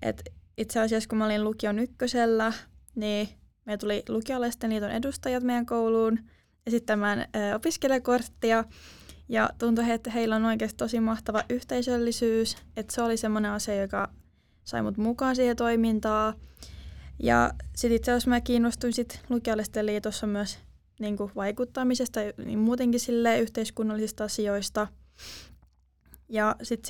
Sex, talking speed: female, 115 wpm